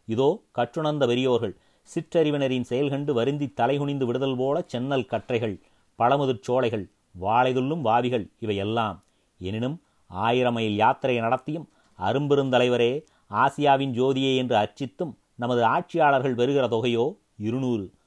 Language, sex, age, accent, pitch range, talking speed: Tamil, male, 30-49, native, 115-140 Hz, 95 wpm